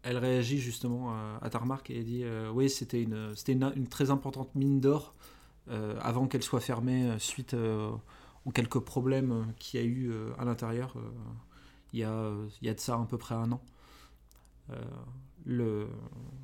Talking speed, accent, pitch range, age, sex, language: 190 wpm, French, 110-130 Hz, 30-49, male, French